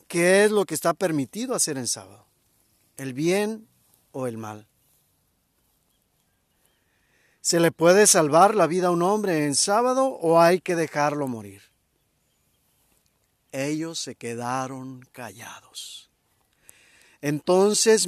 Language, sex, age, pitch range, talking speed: Spanish, male, 50-69, 125-180 Hz, 115 wpm